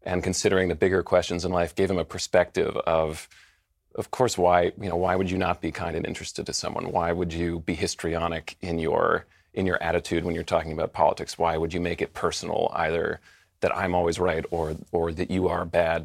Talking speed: 220 wpm